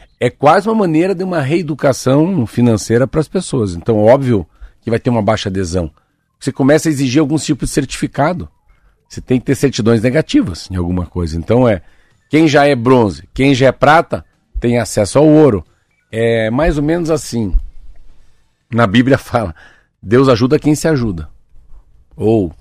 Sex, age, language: male, 50-69, Portuguese